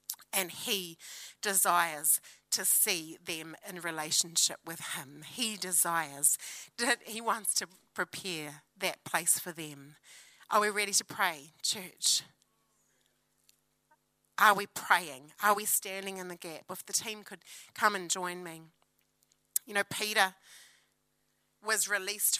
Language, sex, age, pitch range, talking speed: English, female, 30-49, 165-215 Hz, 130 wpm